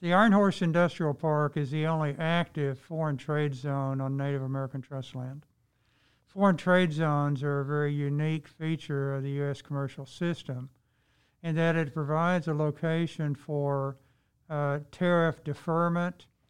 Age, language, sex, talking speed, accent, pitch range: 60-79, English, male, 145 wpm, American, 140-160 Hz